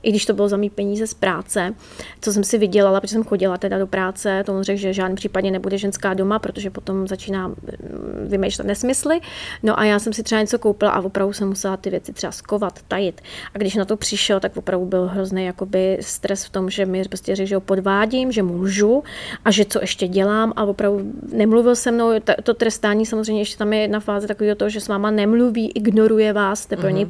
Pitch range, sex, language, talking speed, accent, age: 200-220 Hz, female, Czech, 215 wpm, native, 30-49